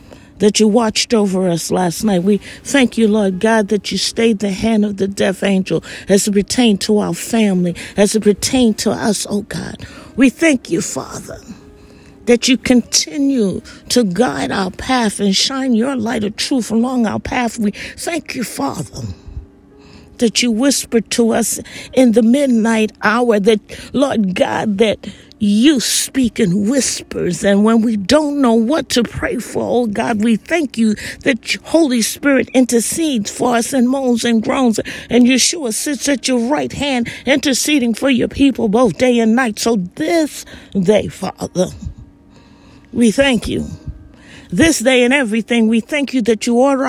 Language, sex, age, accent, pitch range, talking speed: English, female, 50-69, American, 210-255 Hz, 170 wpm